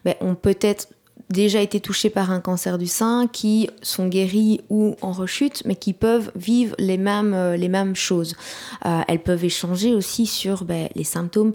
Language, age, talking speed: French, 20-39, 180 wpm